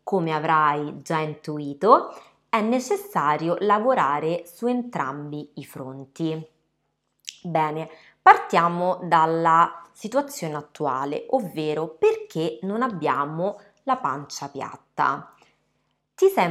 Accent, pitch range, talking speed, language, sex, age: native, 150-195 Hz, 90 wpm, Italian, female, 20-39